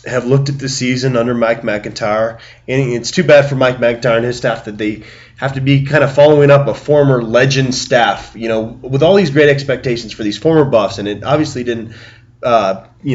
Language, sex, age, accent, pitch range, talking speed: English, male, 20-39, American, 115-145 Hz, 220 wpm